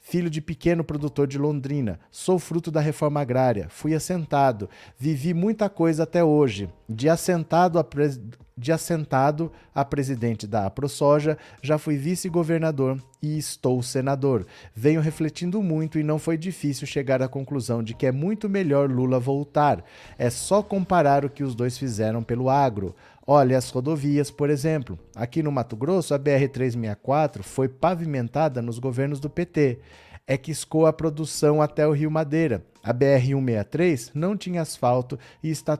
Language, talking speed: Portuguese, 155 wpm